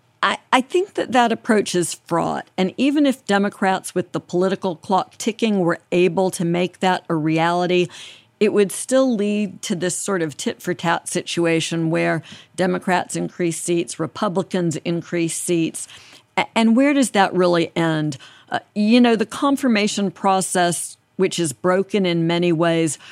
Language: English